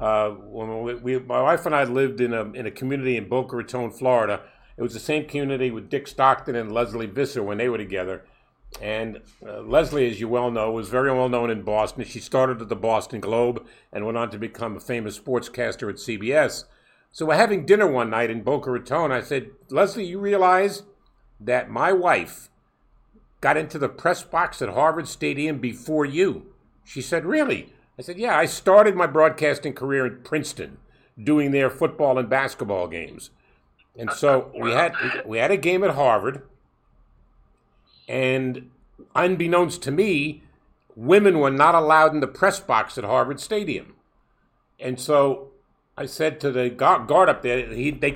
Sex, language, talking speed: male, English, 180 wpm